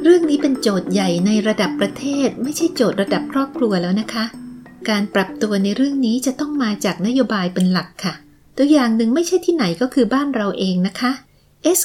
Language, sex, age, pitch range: Thai, female, 30-49, 190-255 Hz